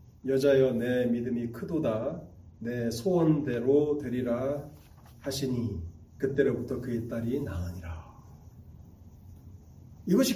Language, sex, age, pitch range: Korean, male, 40-59, 100-155 Hz